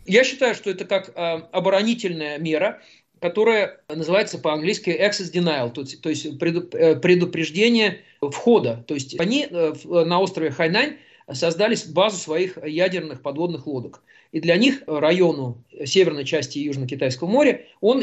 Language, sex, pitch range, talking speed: Russian, male, 145-180 Hz, 125 wpm